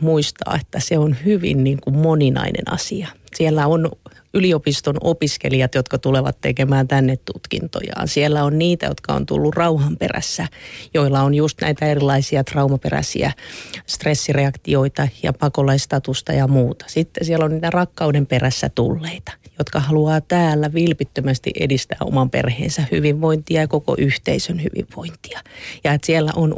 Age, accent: 30-49, native